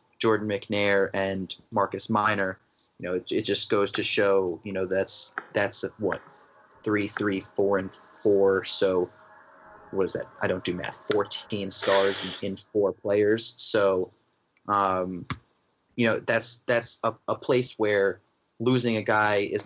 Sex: male